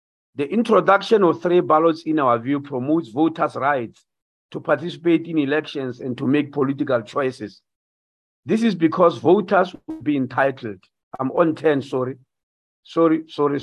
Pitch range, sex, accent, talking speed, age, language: 130-170 Hz, male, South African, 145 wpm, 50-69, English